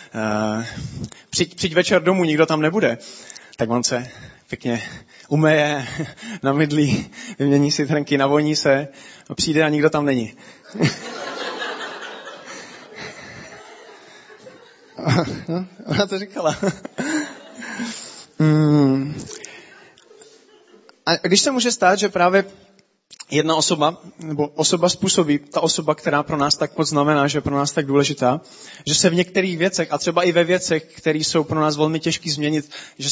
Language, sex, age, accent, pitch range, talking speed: Czech, male, 30-49, native, 145-180 Hz, 135 wpm